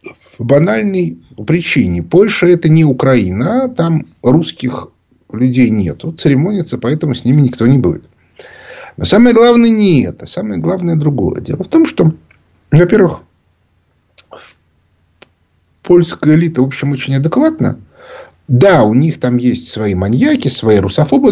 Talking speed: 130 wpm